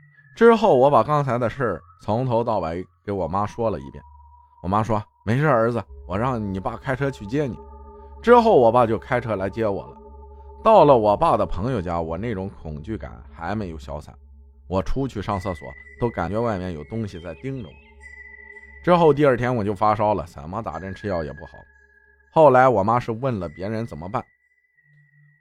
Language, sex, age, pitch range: Chinese, male, 20-39, 85-140 Hz